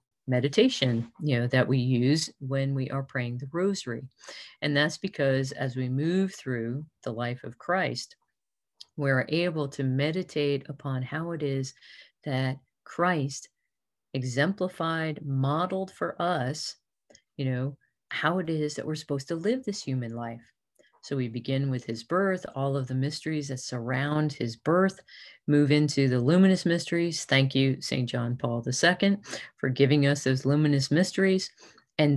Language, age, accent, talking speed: English, 40-59, American, 155 wpm